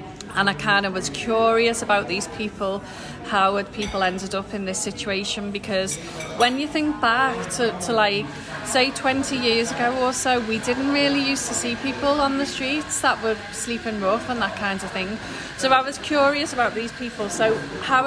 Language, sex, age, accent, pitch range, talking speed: English, female, 30-49, British, 185-230 Hz, 195 wpm